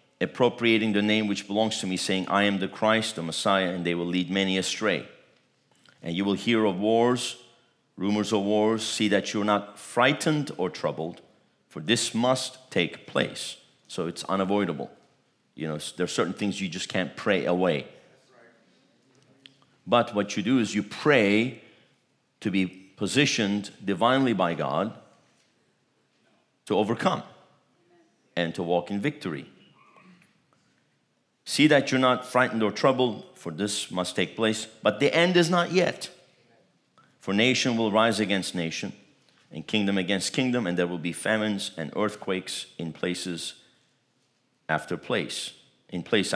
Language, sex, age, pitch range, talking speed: English, male, 50-69, 95-115 Hz, 150 wpm